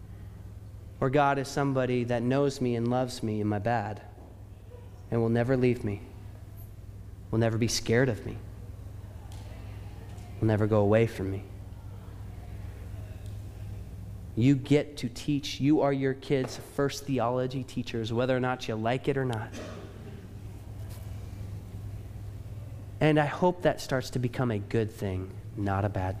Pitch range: 100-150 Hz